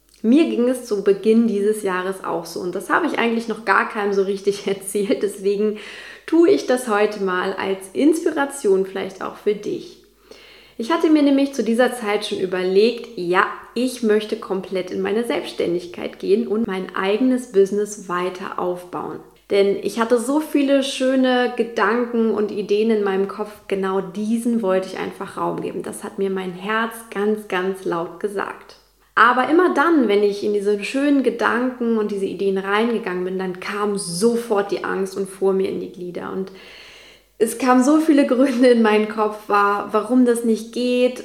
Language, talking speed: German, 175 wpm